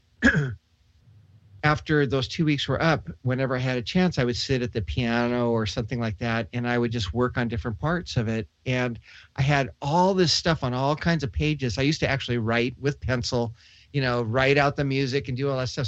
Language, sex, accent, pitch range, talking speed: English, male, American, 115-150 Hz, 225 wpm